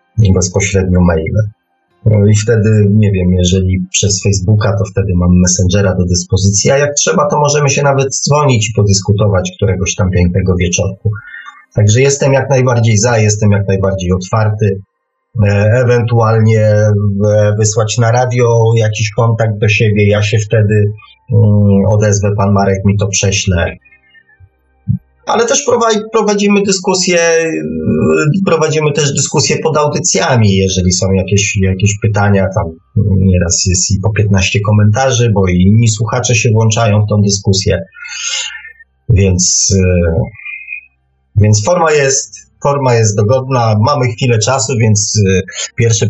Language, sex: Polish, male